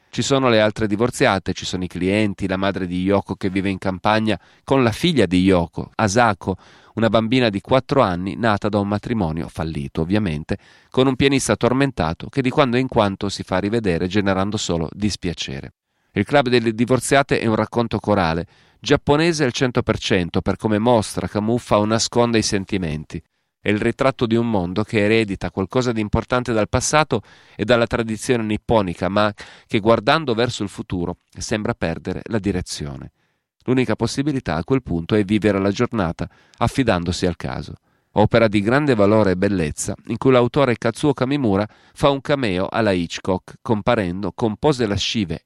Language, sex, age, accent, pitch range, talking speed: Italian, male, 40-59, native, 95-120 Hz, 170 wpm